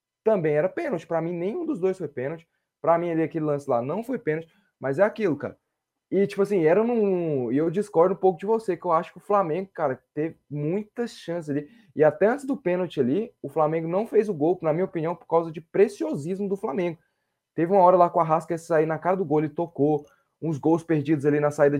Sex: male